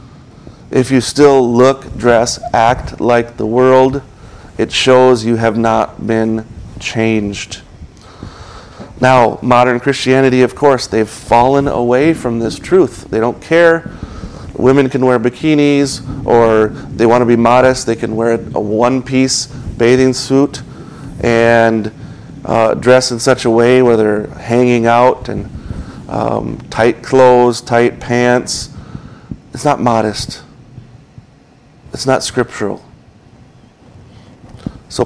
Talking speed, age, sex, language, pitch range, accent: 125 wpm, 40-59, male, English, 110-130 Hz, American